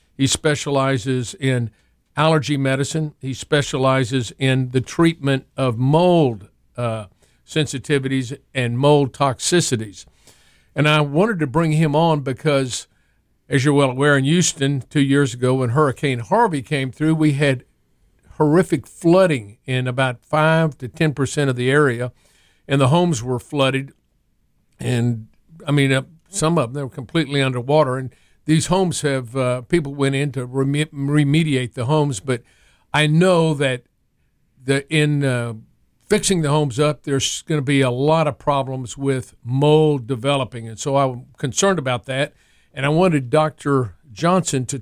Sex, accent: male, American